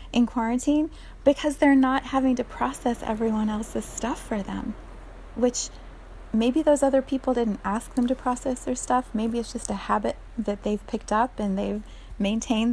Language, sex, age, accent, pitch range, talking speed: English, female, 30-49, American, 200-240 Hz, 175 wpm